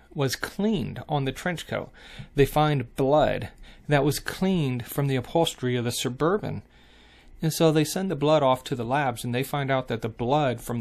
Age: 30-49